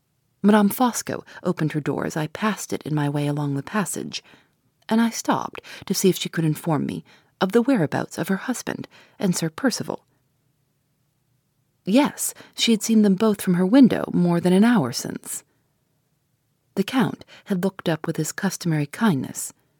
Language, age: English, 40-59